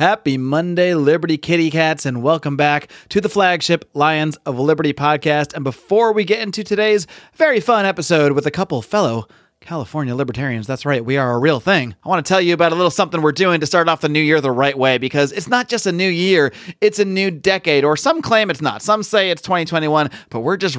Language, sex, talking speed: English, male, 230 wpm